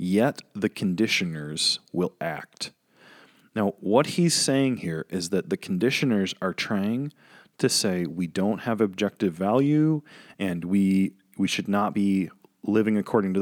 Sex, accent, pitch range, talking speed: male, American, 90-135 Hz, 145 wpm